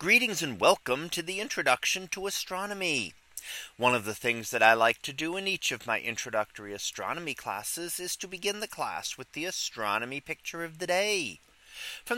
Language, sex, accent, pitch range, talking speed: English, male, American, 125-185 Hz, 180 wpm